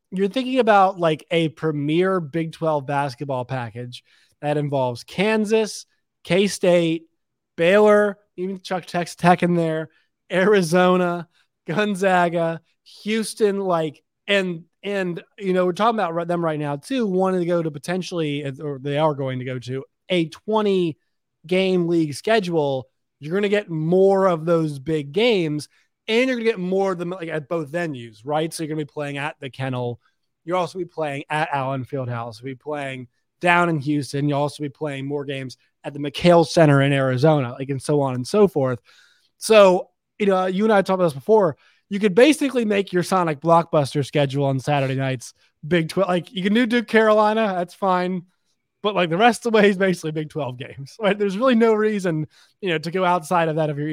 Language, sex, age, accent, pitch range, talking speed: English, male, 30-49, American, 145-190 Hz, 195 wpm